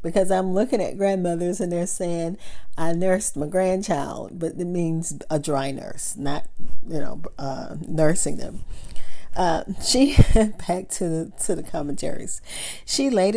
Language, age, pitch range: English, 40-59, 160-195 Hz